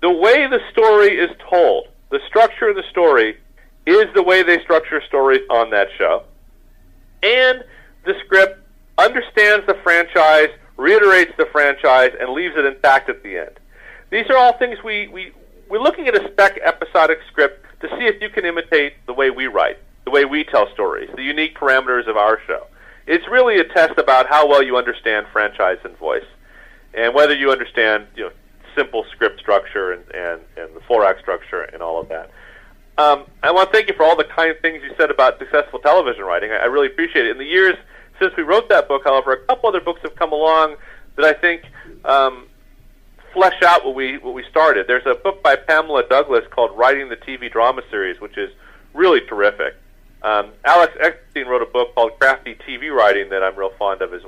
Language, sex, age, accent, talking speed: English, male, 40-59, American, 205 wpm